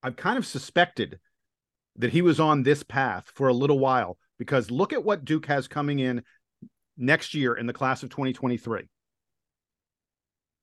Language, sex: English, male